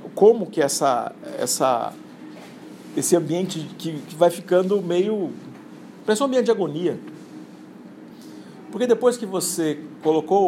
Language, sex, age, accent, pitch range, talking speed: Portuguese, male, 50-69, Brazilian, 160-215 Hz, 110 wpm